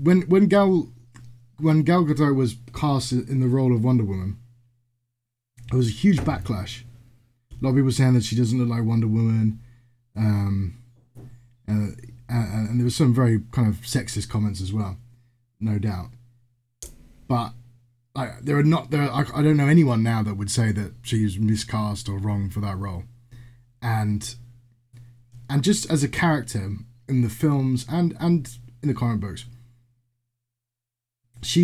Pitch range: 120-130 Hz